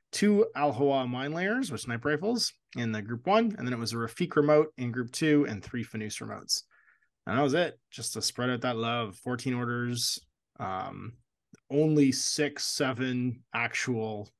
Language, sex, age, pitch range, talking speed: English, male, 20-39, 110-145 Hz, 175 wpm